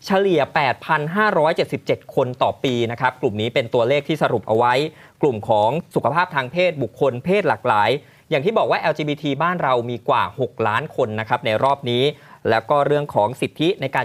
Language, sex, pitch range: Thai, male, 125-155 Hz